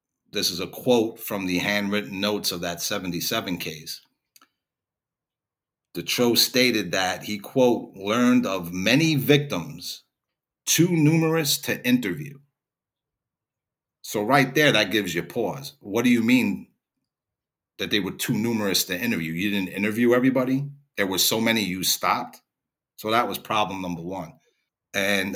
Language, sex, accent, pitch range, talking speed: English, male, American, 95-135 Hz, 140 wpm